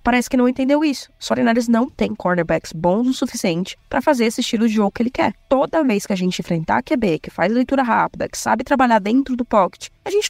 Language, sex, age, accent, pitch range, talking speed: Portuguese, female, 20-39, Brazilian, 190-255 Hz, 245 wpm